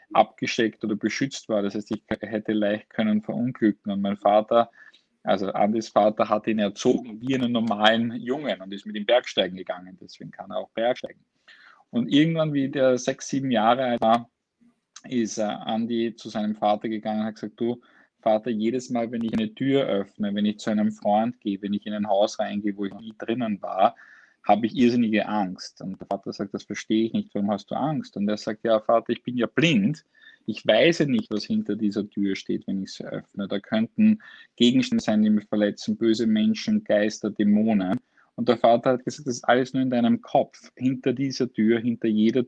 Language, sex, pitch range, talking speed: German, male, 105-125 Hz, 205 wpm